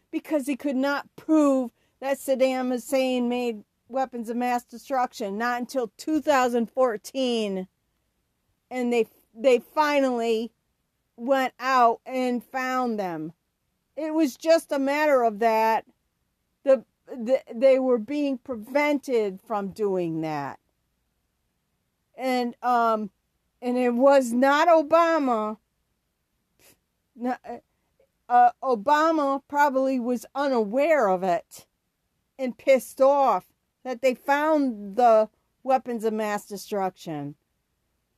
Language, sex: English, female